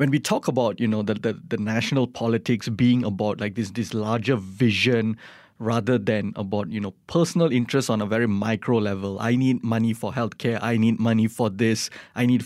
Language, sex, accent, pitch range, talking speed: English, male, Malaysian, 115-140 Hz, 200 wpm